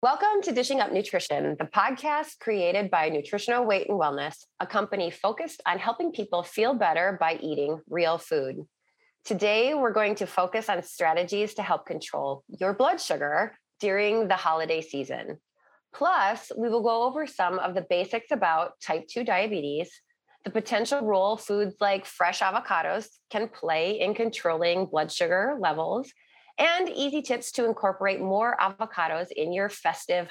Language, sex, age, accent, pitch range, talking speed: English, female, 30-49, American, 170-240 Hz, 155 wpm